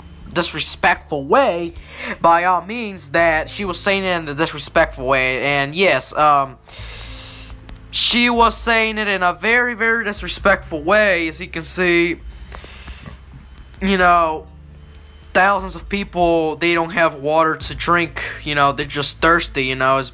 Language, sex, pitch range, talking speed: English, male, 140-195 Hz, 150 wpm